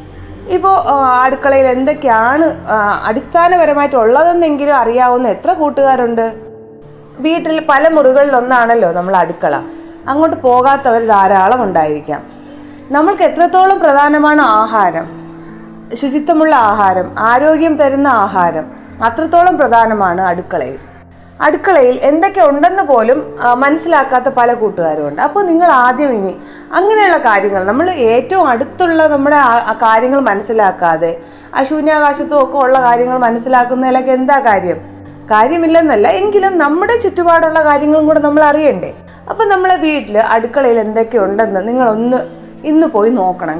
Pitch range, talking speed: 215-310 Hz, 95 wpm